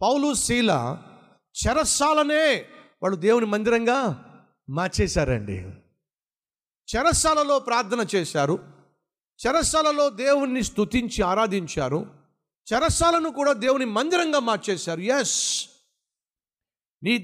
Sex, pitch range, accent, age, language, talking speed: male, 200-270 Hz, native, 50-69, Telugu, 70 wpm